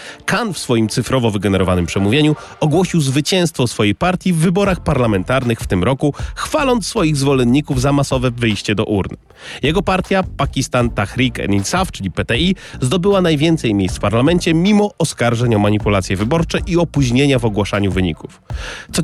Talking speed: 150 wpm